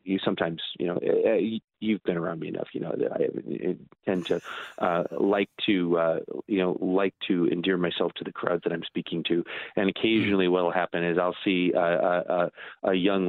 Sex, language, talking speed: male, English, 200 wpm